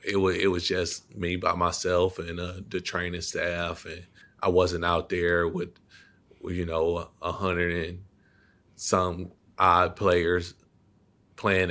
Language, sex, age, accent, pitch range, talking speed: English, male, 20-39, American, 85-95 Hz, 145 wpm